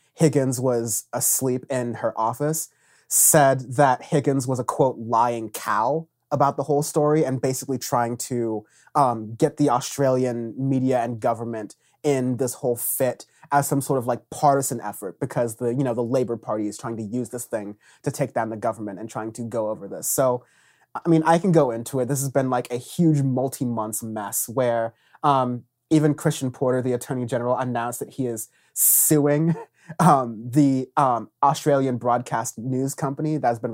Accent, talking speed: American, 185 wpm